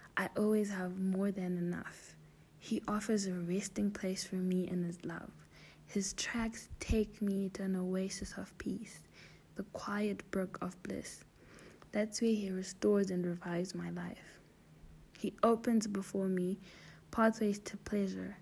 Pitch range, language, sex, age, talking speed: 185-210 Hz, English, female, 20-39, 145 wpm